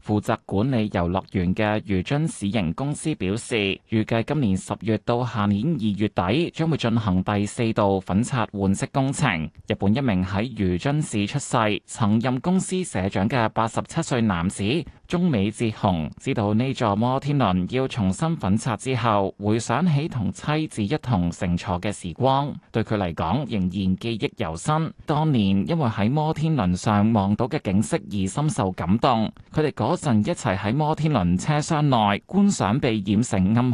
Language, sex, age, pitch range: Chinese, male, 20-39, 100-135 Hz